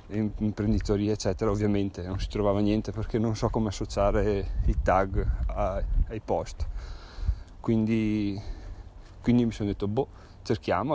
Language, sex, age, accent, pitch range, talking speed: Italian, male, 30-49, native, 95-110 Hz, 130 wpm